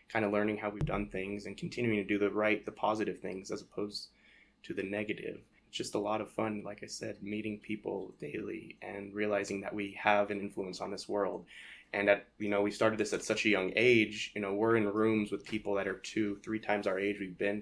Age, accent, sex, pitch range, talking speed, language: 20-39, American, male, 100-105 Hz, 240 wpm, English